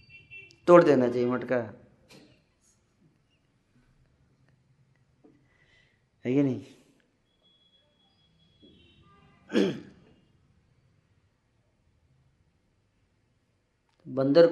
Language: Hindi